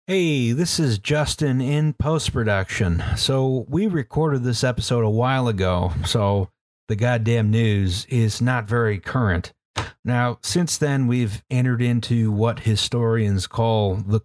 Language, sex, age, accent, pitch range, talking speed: English, male, 40-59, American, 110-140 Hz, 135 wpm